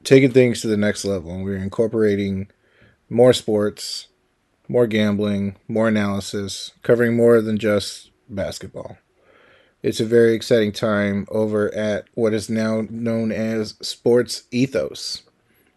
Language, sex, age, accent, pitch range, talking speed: English, male, 30-49, American, 105-115 Hz, 130 wpm